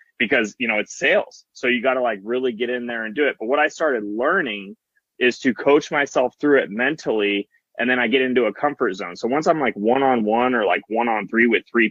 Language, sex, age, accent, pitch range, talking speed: English, male, 20-39, American, 110-145 Hz, 255 wpm